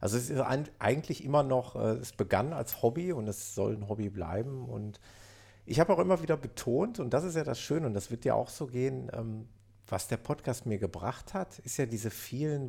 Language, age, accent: German, 50-69, German